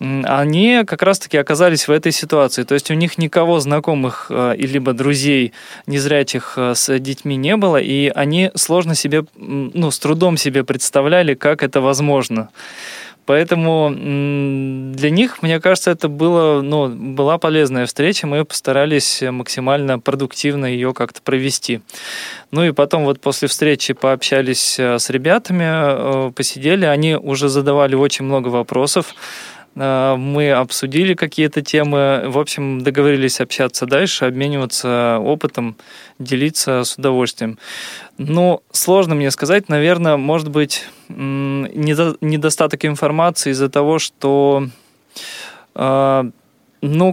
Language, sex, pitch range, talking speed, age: Russian, male, 135-155 Hz, 120 wpm, 20-39